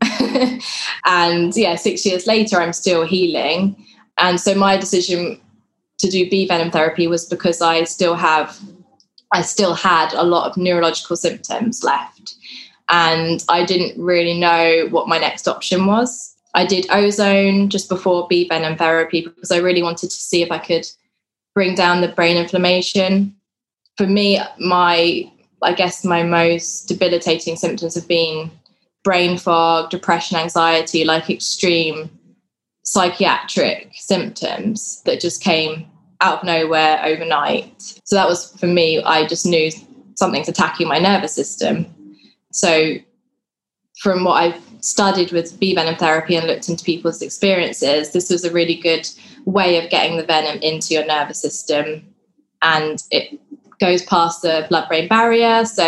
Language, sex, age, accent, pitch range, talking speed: English, female, 20-39, British, 165-195 Hz, 150 wpm